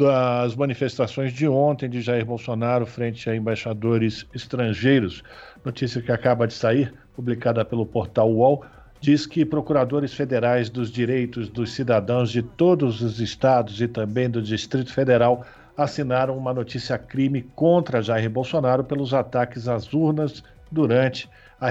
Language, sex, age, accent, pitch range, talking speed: Portuguese, male, 50-69, Brazilian, 120-145 Hz, 140 wpm